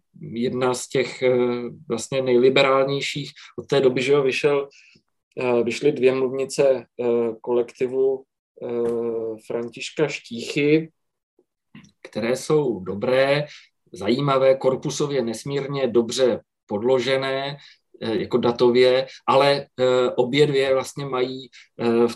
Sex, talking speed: male, 85 wpm